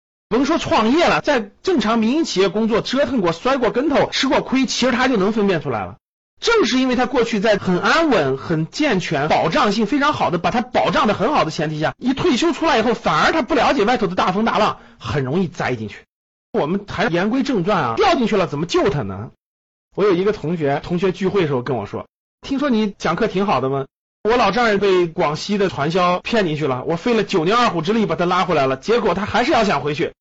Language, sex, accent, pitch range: Chinese, male, native, 155-240 Hz